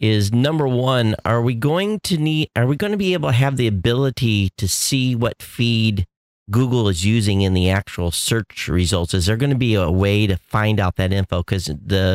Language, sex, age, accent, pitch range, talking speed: English, male, 40-59, American, 95-115 Hz, 215 wpm